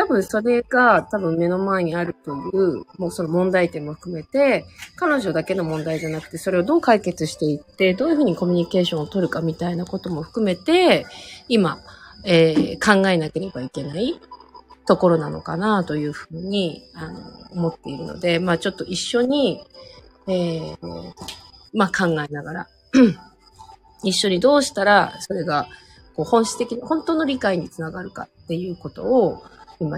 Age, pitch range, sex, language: 30-49, 160-225 Hz, female, Japanese